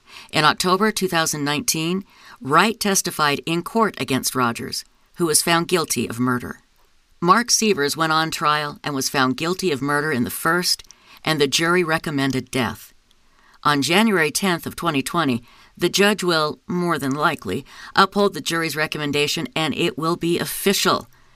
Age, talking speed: 50-69, 150 wpm